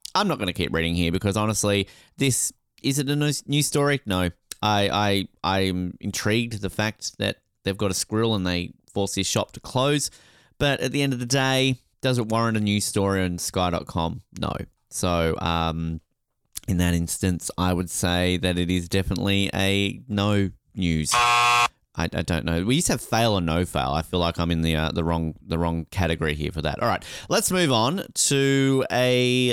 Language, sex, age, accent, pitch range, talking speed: English, male, 20-39, Australian, 90-125 Hz, 200 wpm